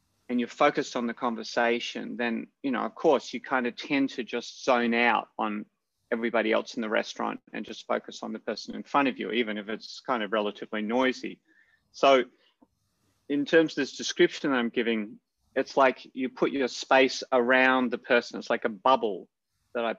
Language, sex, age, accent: English, male, 30-49, Australian